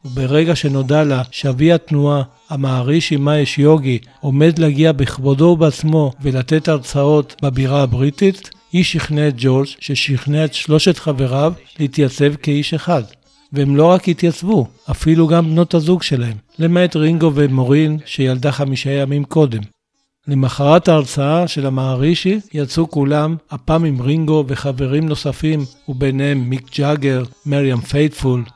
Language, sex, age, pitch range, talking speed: Hebrew, male, 60-79, 135-155 Hz, 120 wpm